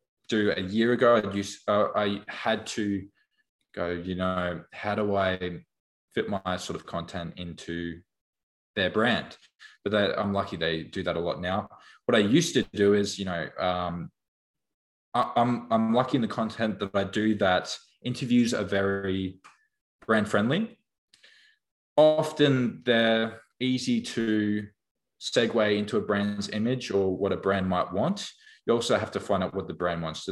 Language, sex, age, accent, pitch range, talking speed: English, male, 20-39, Australian, 90-115 Hz, 170 wpm